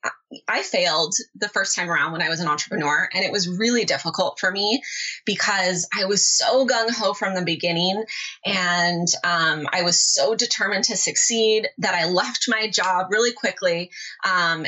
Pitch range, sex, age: 175-220 Hz, female, 20-39